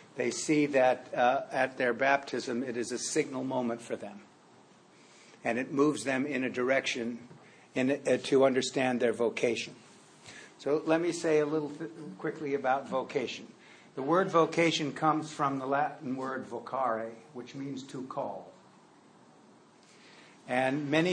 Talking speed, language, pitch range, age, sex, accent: 140 wpm, English, 125-150 Hz, 60-79, male, American